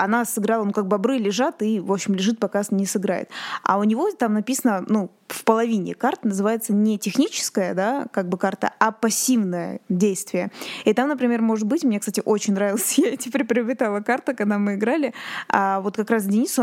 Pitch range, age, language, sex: 200-240 Hz, 20-39, Russian, female